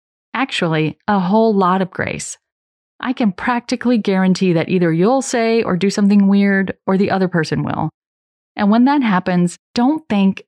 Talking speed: 165 wpm